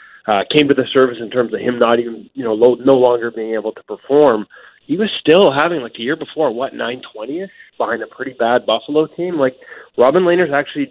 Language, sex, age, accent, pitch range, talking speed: English, male, 30-49, American, 115-140 Hz, 220 wpm